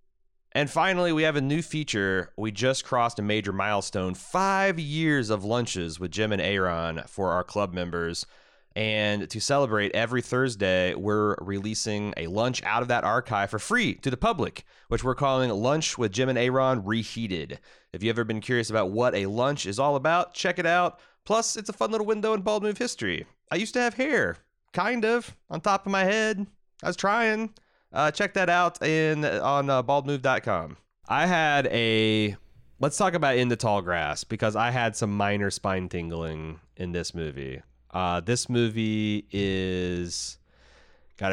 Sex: male